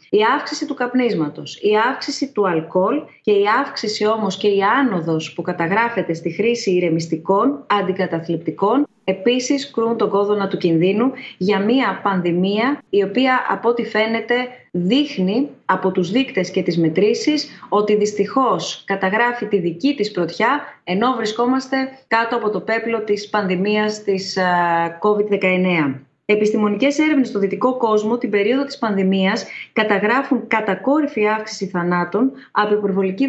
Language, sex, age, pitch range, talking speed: Greek, female, 20-39, 190-250 Hz, 135 wpm